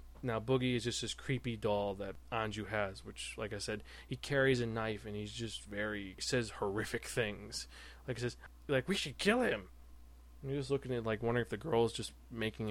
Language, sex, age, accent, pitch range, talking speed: English, male, 20-39, American, 105-130 Hz, 210 wpm